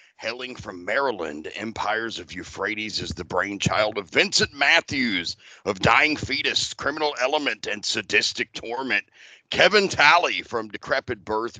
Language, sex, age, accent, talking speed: English, male, 40-59, American, 130 wpm